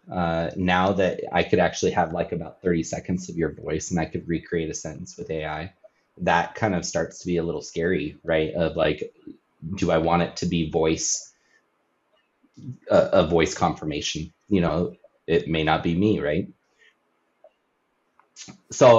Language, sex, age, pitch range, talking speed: English, male, 20-39, 85-100 Hz, 170 wpm